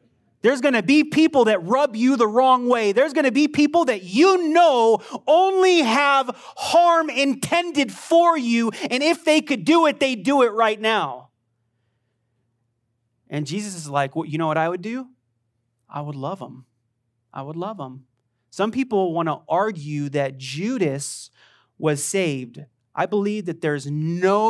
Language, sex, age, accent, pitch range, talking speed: English, male, 30-49, American, 150-225 Hz, 160 wpm